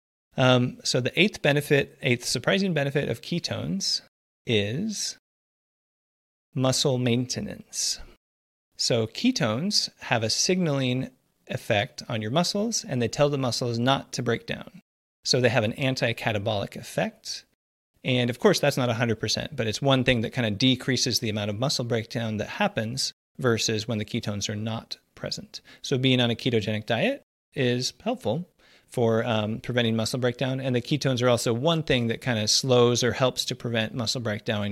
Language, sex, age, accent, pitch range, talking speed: English, male, 30-49, American, 110-135 Hz, 165 wpm